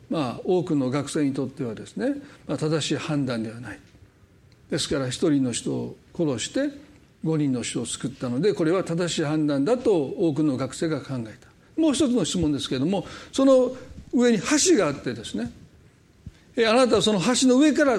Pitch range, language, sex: 160-270 Hz, Japanese, male